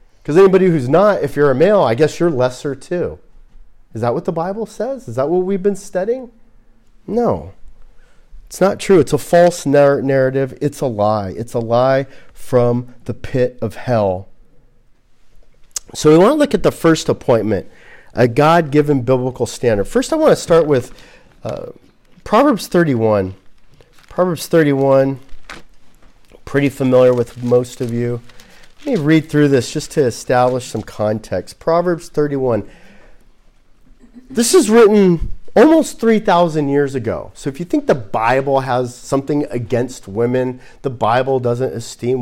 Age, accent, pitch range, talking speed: 40-59, American, 120-170 Hz, 150 wpm